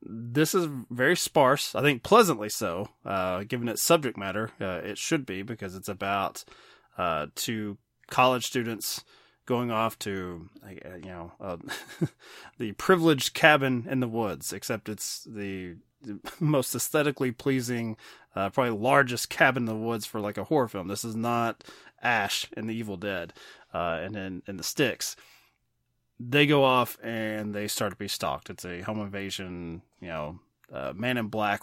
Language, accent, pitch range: English, American, 100-125 Hz